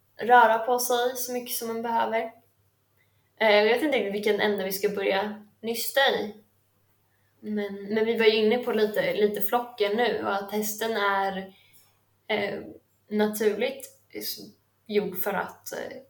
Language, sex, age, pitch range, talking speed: Swedish, female, 20-39, 200-245 Hz, 140 wpm